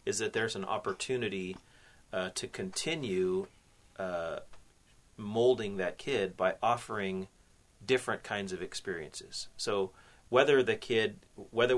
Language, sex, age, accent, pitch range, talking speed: English, male, 30-49, American, 95-120 Hz, 115 wpm